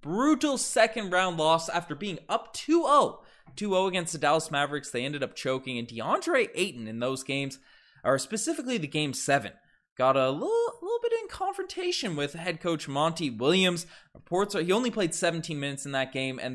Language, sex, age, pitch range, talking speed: English, male, 20-39, 130-185 Hz, 185 wpm